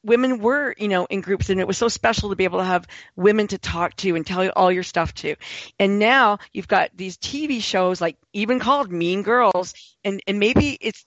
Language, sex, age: English, female, 50-69